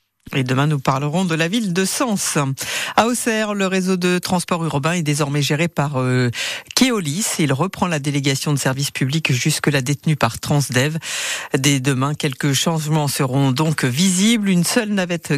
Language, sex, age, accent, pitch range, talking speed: French, female, 50-69, French, 140-180 Hz, 170 wpm